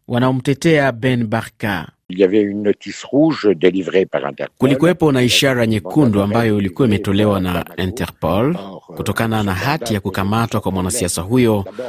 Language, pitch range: Swahili, 100-135 Hz